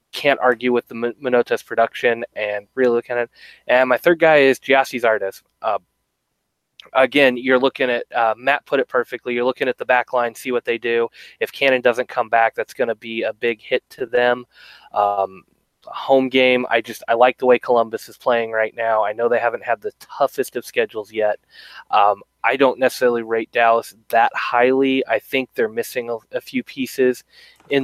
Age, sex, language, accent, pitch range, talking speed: 20-39, male, English, American, 115-130 Hz, 200 wpm